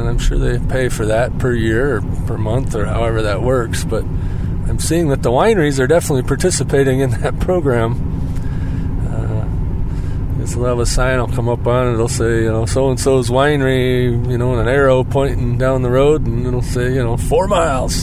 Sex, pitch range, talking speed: male, 105-125 Hz, 210 wpm